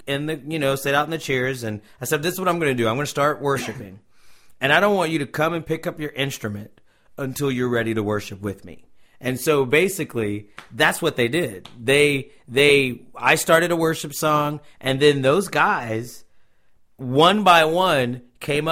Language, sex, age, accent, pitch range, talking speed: English, male, 40-59, American, 125-165 Hz, 210 wpm